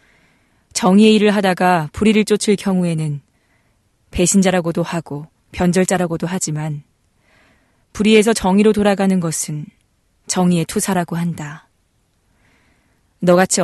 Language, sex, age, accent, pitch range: Korean, female, 20-39, native, 160-200 Hz